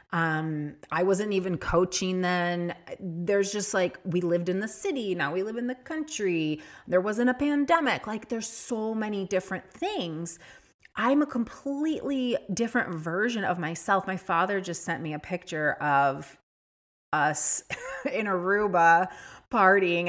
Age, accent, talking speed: 30-49, American, 145 wpm